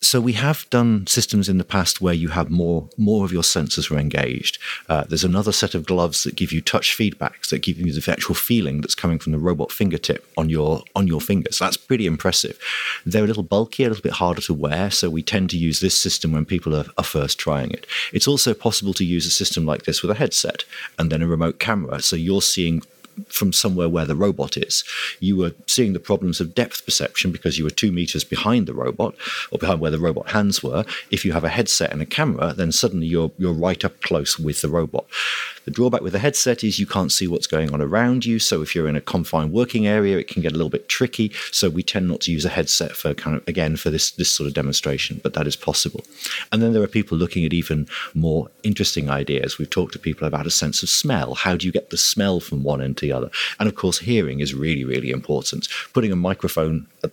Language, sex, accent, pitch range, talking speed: English, male, British, 80-100 Hz, 250 wpm